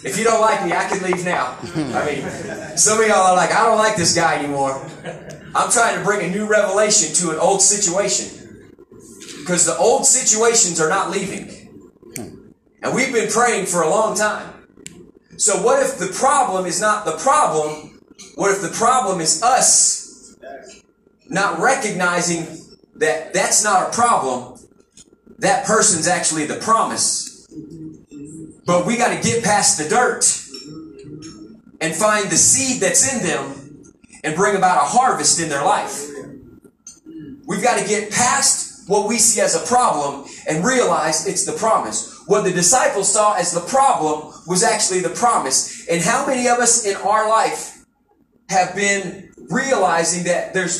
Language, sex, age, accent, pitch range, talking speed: English, male, 30-49, American, 170-225 Hz, 165 wpm